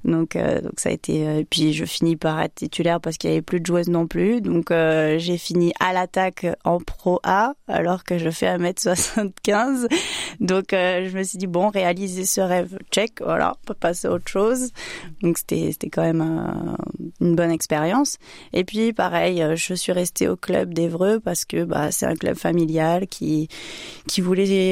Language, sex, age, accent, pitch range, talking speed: French, female, 20-39, French, 160-185 Hz, 205 wpm